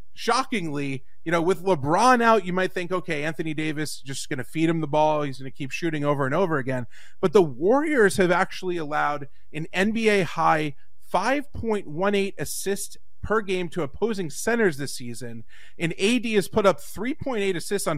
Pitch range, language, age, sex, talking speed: 145-195 Hz, English, 30-49, male, 175 wpm